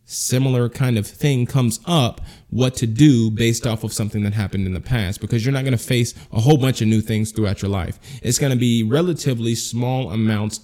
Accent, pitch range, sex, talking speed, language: American, 105-135 Hz, male, 225 wpm, English